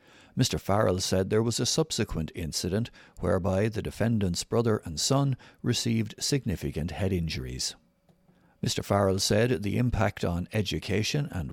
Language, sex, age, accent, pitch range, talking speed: English, male, 60-79, Irish, 90-120 Hz, 135 wpm